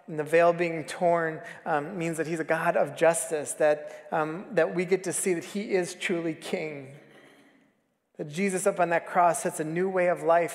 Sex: male